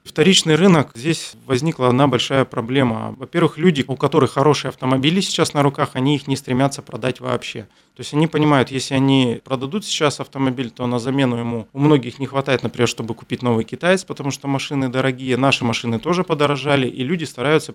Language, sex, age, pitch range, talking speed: Russian, male, 30-49, 120-145 Hz, 185 wpm